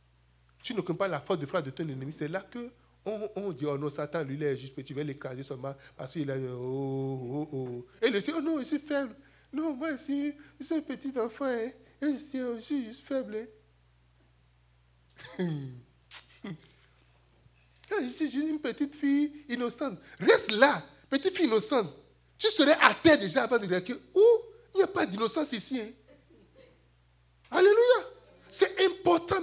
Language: French